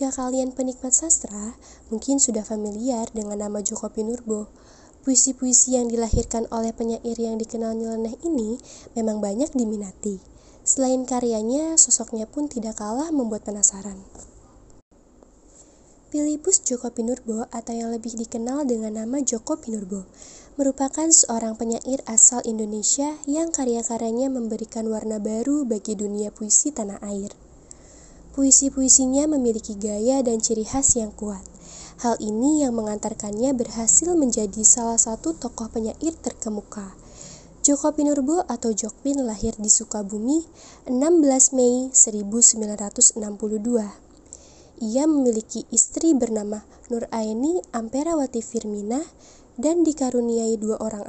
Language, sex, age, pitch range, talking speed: Indonesian, female, 20-39, 220-265 Hz, 115 wpm